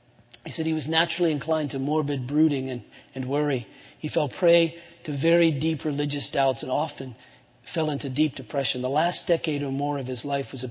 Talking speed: 200 wpm